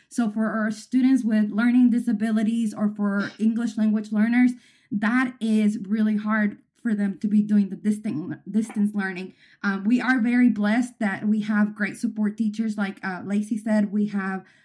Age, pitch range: 20-39, 210-225 Hz